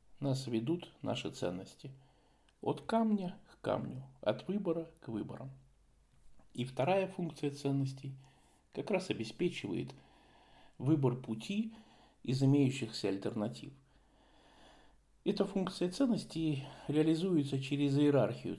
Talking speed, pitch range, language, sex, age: 95 wpm, 120-165 Hz, Russian, male, 50-69